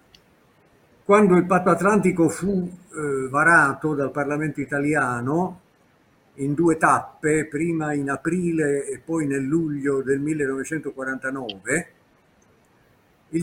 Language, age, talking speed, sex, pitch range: Italian, 50-69, 100 wpm, male, 140-175 Hz